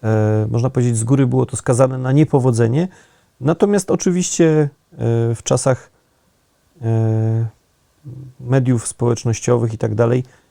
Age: 30-49